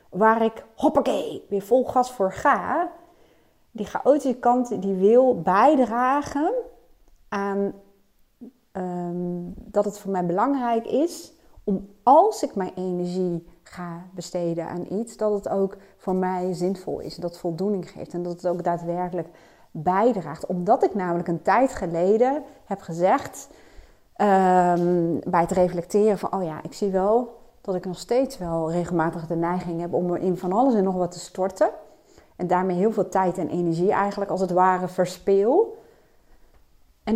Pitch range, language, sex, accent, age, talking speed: 180-250 Hz, Dutch, female, Dutch, 30-49, 155 wpm